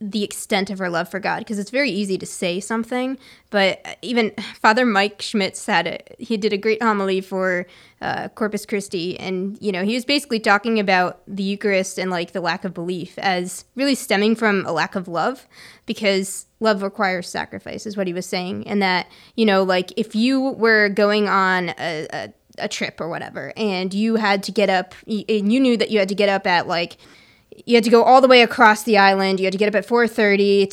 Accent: American